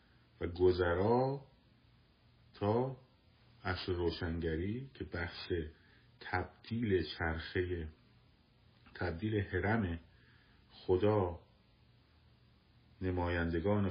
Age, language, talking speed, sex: 50-69, Persian, 55 wpm, male